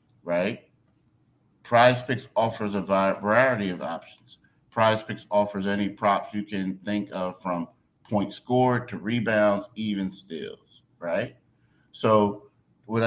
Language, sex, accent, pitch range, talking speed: English, male, American, 100-115 Hz, 115 wpm